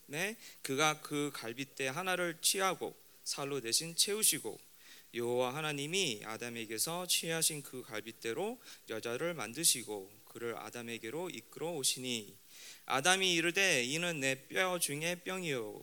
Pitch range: 115-160 Hz